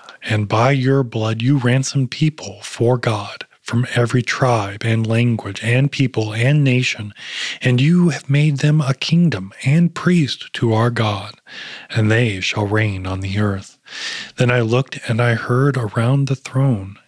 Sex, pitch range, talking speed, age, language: male, 110-135 Hz, 160 wpm, 30-49, English